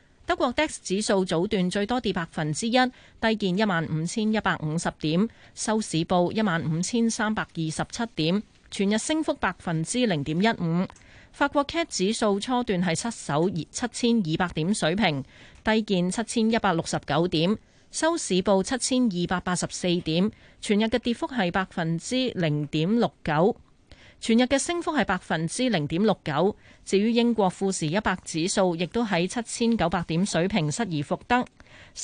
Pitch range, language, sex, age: 175-235 Hz, Chinese, female, 30-49